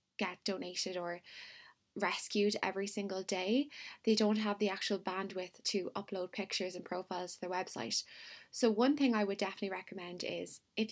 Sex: female